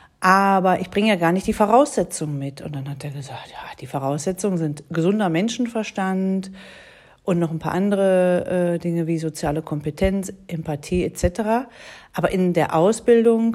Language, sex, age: German, female, 40-59